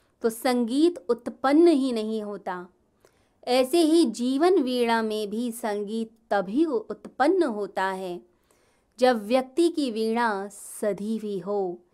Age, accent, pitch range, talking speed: 20-39, native, 200-270 Hz, 120 wpm